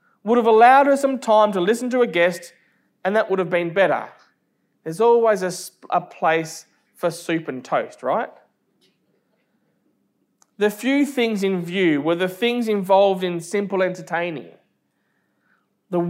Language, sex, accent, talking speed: English, male, Australian, 150 wpm